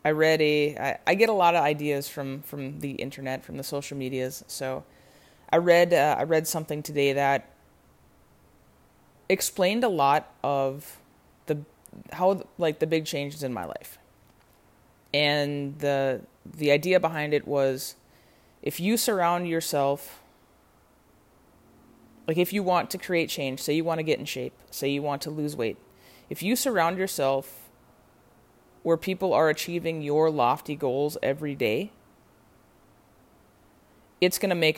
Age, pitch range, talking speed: 20-39, 140-170 Hz, 150 wpm